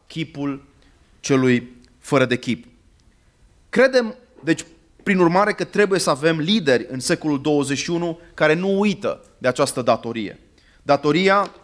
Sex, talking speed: male, 125 wpm